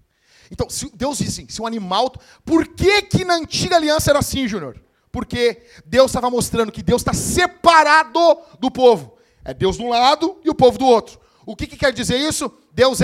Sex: male